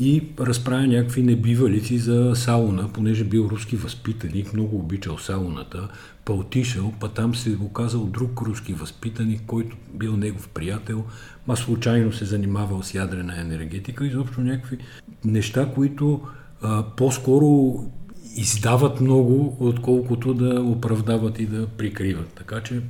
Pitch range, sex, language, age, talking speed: 100-125 Hz, male, Bulgarian, 50-69, 135 wpm